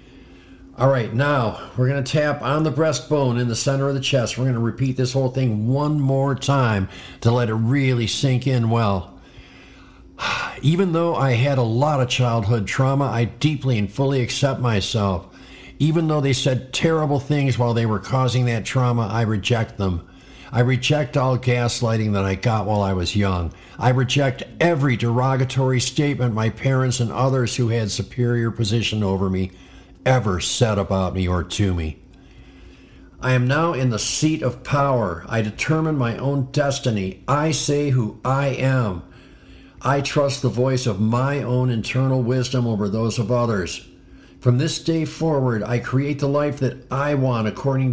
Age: 50-69